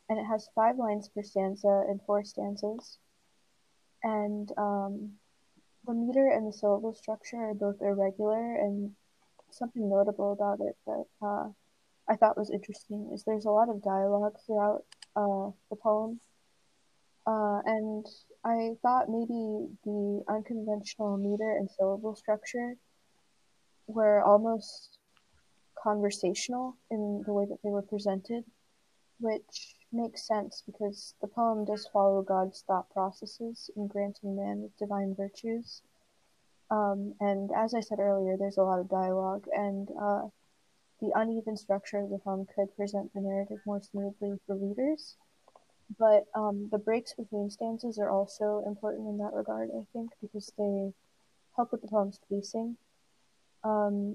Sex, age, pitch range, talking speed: female, 20-39, 200-220 Hz, 140 wpm